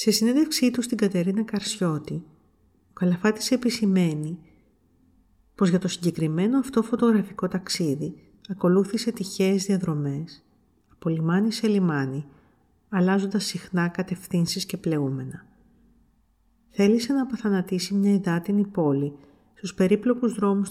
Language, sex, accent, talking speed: Greek, female, native, 105 wpm